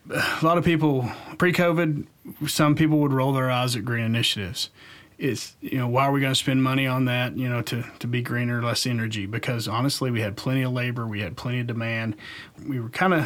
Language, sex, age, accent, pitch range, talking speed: English, male, 30-49, American, 120-145 Hz, 220 wpm